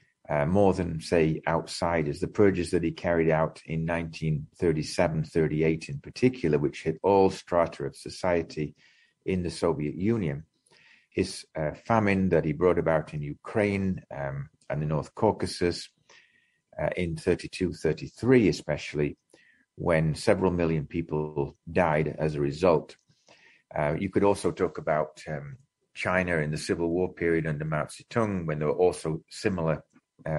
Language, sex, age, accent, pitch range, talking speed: English, male, 40-59, British, 80-95 Hz, 140 wpm